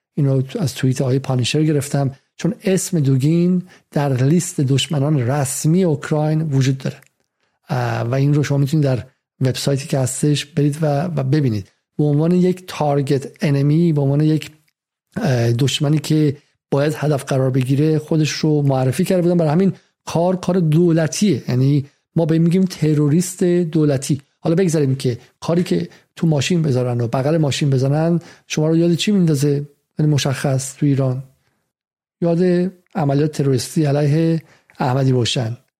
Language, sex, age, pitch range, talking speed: Persian, male, 50-69, 135-165 Hz, 145 wpm